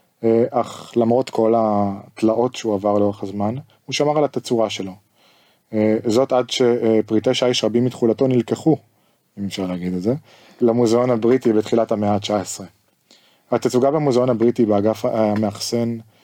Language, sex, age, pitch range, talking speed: Hebrew, male, 20-39, 110-125 Hz, 130 wpm